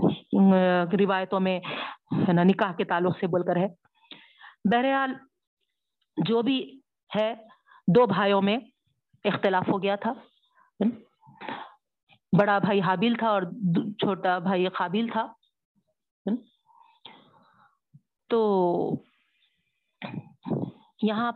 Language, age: Urdu, 50-69